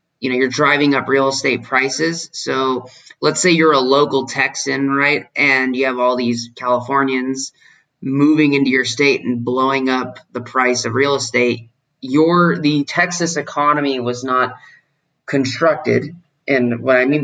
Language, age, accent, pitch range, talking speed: English, 30-49, American, 125-145 Hz, 155 wpm